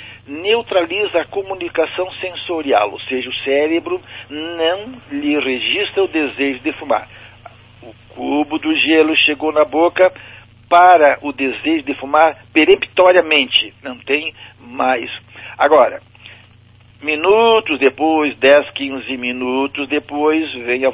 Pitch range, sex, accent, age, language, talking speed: 120-155 Hz, male, Brazilian, 60-79, Portuguese, 115 wpm